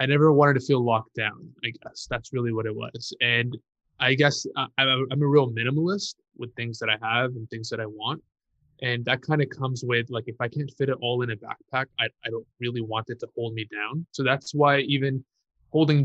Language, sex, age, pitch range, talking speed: English, male, 20-39, 120-145 Hz, 230 wpm